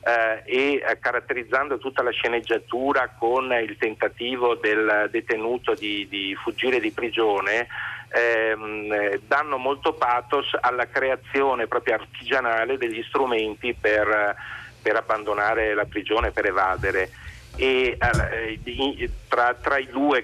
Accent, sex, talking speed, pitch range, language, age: native, male, 125 wpm, 105-130 Hz, Italian, 40-59